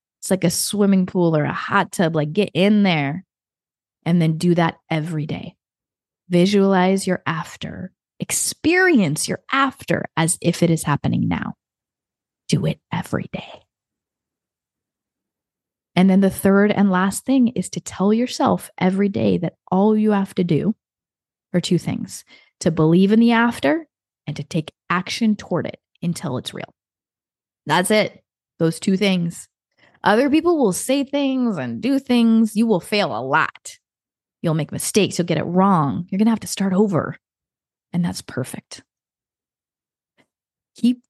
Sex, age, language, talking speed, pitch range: female, 20-39, English, 155 wpm, 170-220 Hz